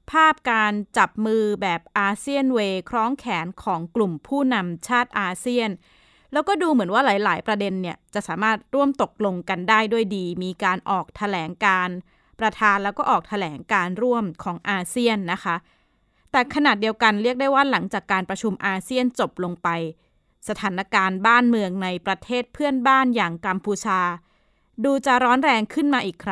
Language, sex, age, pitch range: Thai, female, 20-39, 190-235 Hz